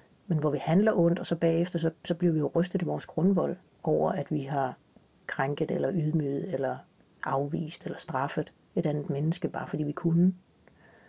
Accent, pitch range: native, 155-185 Hz